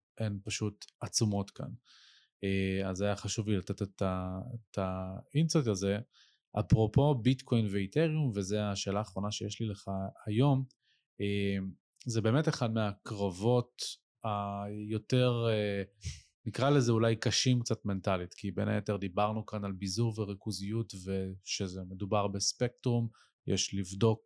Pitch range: 100-125 Hz